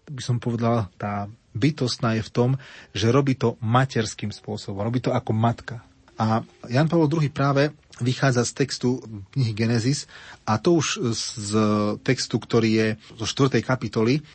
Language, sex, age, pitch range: Slovak, male, 30-49, 110-130 Hz